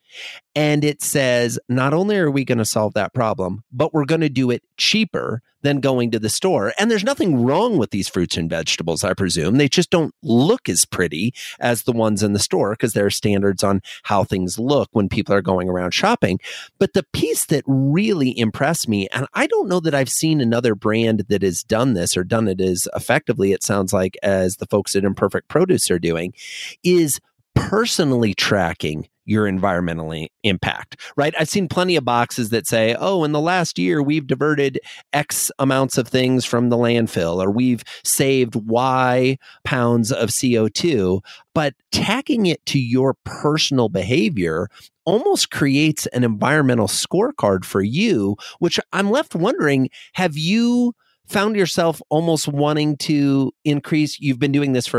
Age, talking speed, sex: 30-49, 180 wpm, male